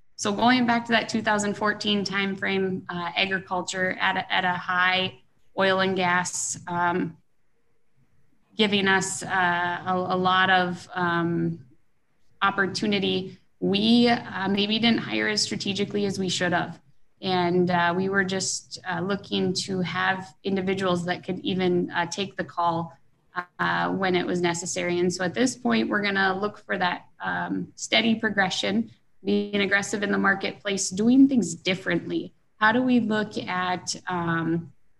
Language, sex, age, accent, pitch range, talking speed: English, female, 20-39, American, 175-200 Hz, 145 wpm